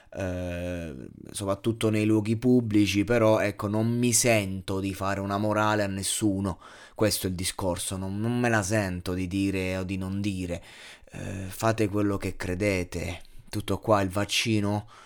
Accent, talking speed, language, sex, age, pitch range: native, 150 wpm, Italian, male, 20-39, 100-110 Hz